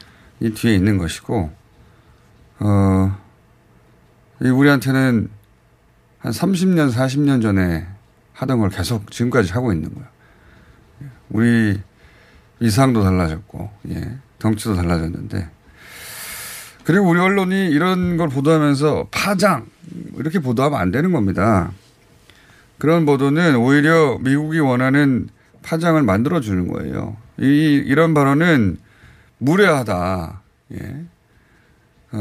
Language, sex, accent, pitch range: Korean, male, native, 105-145 Hz